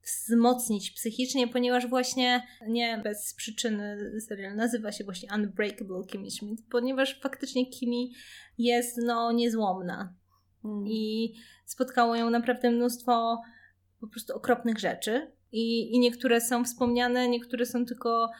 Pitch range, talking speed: 195-240 Hz, 120 wpm